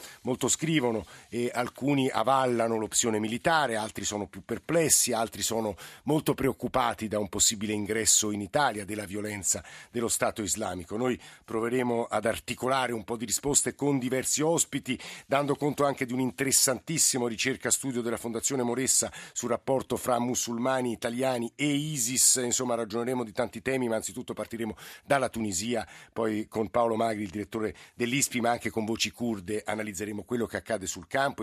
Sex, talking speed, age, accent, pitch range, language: male, 155 wpm, 50-69, native, 105-125 Hz, Italian